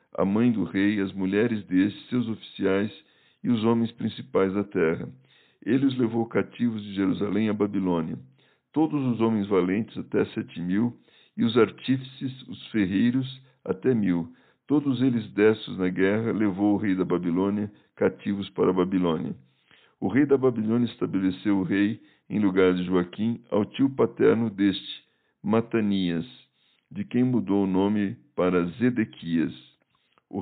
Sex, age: male, 60-79